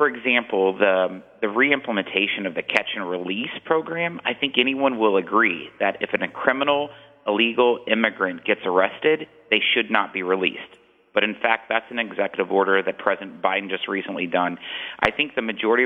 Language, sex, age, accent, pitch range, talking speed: English, male, 40-59, American, 105-150 Hz, 165 wpm